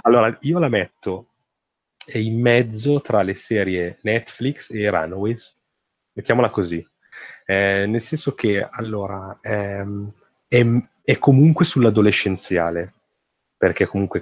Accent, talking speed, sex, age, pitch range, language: native, 110 wpm, male, 30-49, 90-105 Hz, Italian